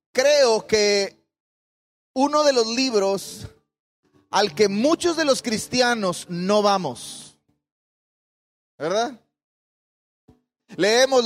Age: 30-49